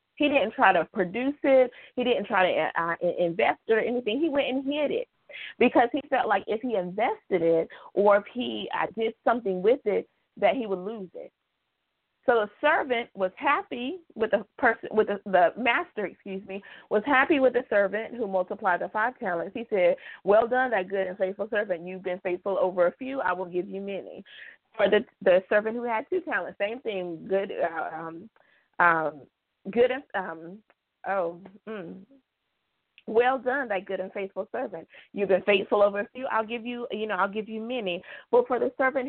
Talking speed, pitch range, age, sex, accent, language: 195 wpm, 195-270 Hz, 30-49, female, American, English